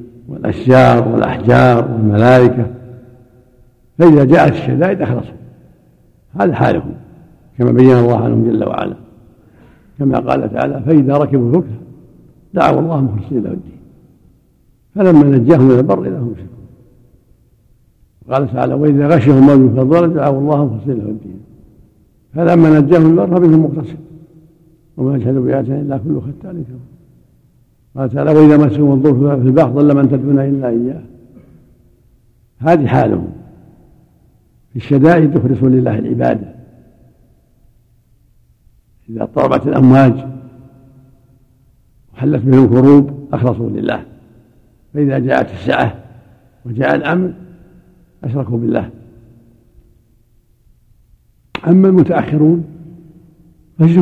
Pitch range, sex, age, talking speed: 120-150 Hz, male, 70-89, 100 wpm